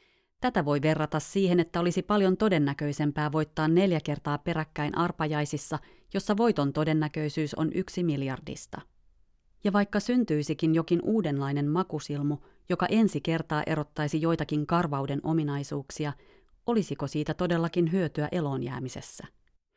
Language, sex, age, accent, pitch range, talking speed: Finnish, female, 30-49, native, 145-175 Hz, 110 wpm